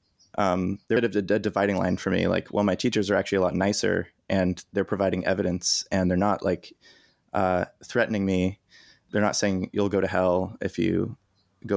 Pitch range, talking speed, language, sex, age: 95-105 Hz, 210 wpm, English, male, 20-39